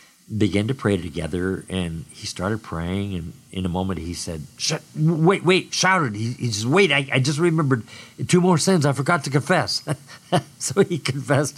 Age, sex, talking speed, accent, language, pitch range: 50-69, male, 185 wpm, American, English, 100-145 Hz